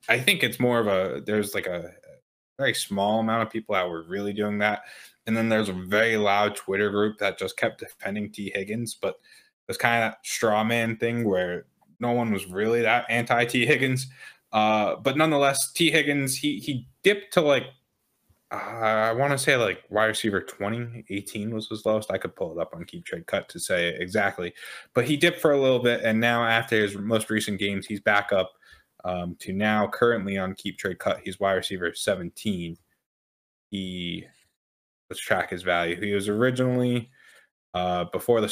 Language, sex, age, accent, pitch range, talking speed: English, male, 20-39, American, 100-120 Hz, 195 wpm